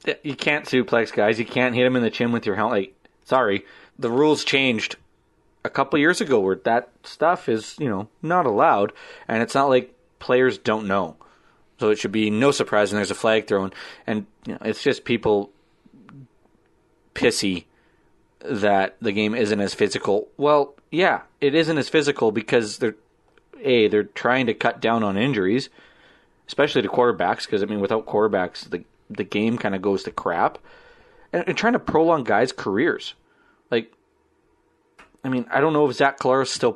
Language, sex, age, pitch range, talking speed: English, male, 30-49, 105-145 Hz, 180 wpm